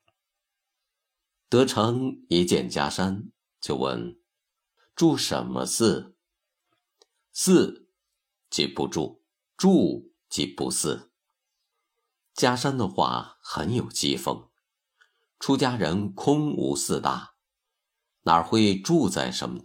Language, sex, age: Chinese, male, 50-69